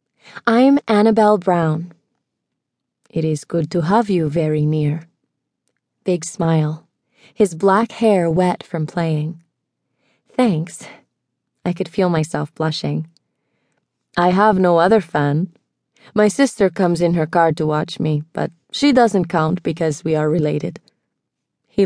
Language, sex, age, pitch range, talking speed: English, female, 30-49, 160-205 Hz, 130 wpm